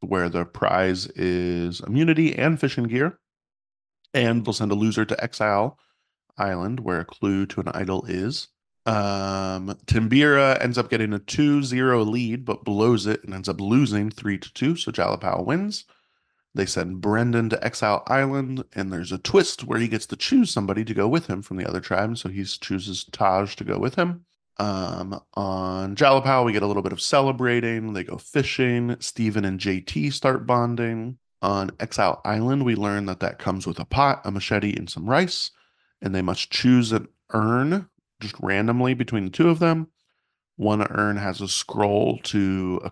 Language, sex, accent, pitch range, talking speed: English, male, American, 95-125 Hz, 180 wpm